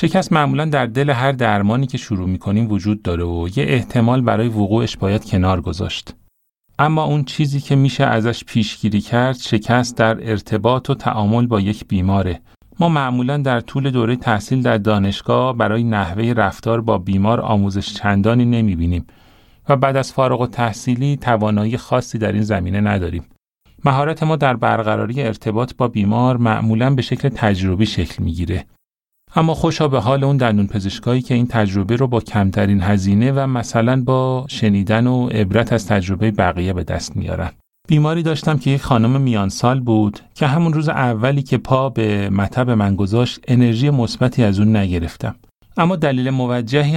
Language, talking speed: Persian, 165 wpm